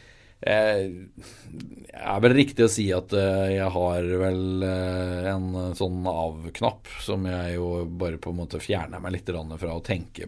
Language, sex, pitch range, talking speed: English, male, 80-100 Hz, 145 wpm